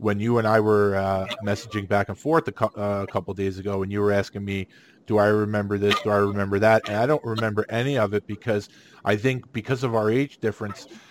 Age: 40-59